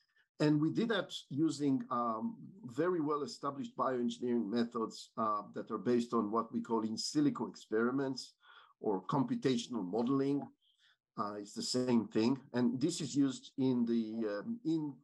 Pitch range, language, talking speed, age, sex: 120-150 Hz, English, 150 wpm, 50-69, male